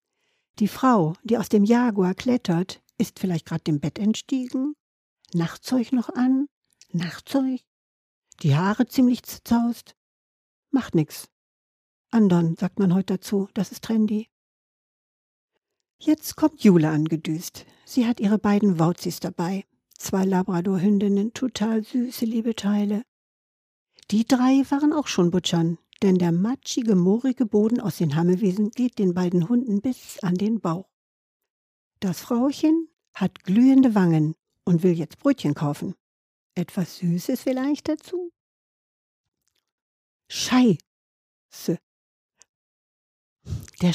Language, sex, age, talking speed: German, female, 60-79, 115 wpm